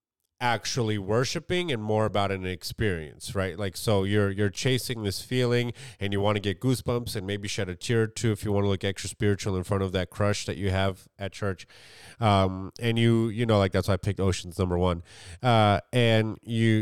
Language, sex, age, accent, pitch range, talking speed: English, male, 30-49, American, 100-120 Hz, 220 wpm